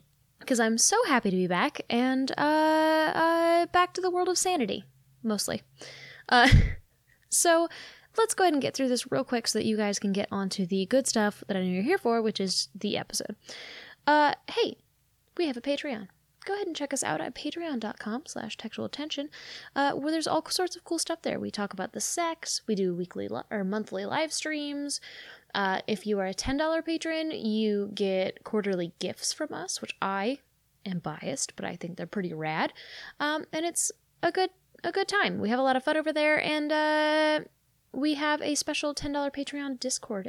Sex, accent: female, American